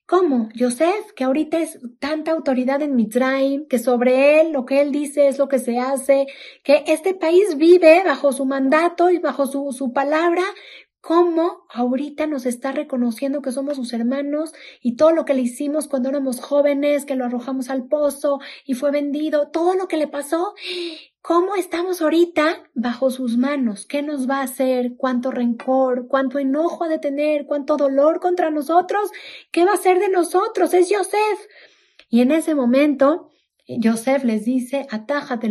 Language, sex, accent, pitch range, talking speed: Spanish, female, Mexican, 255-315 Hz, 170 wpm